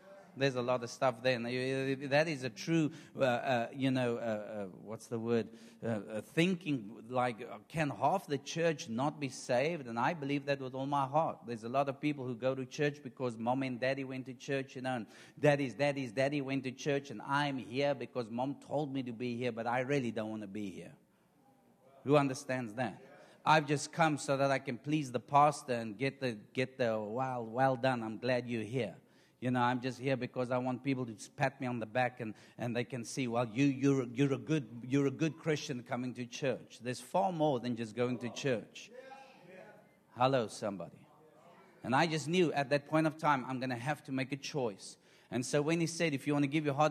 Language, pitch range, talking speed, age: English, 120-145 Hz, 235 wpm, 50-69